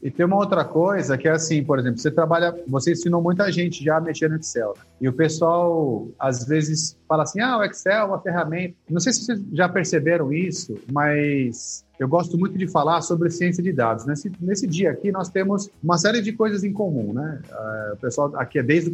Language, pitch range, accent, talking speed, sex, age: Portuguese, 155-190 Hz, Brazilian, 220 wpm, male, 30-49